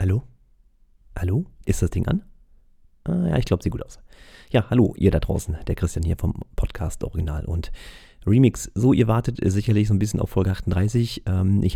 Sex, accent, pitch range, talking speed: male, German, 90-110 Hz, 190 wpm